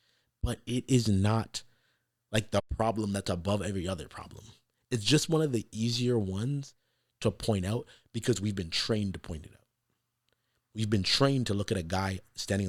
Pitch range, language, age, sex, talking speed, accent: 100-120 Hz, English, 30-49, male, 185 wpm, American